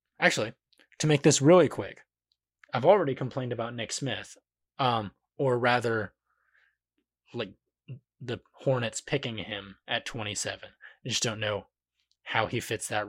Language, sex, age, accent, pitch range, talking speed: English, male, 20-39, American, 105-125 Hz, 140 wpm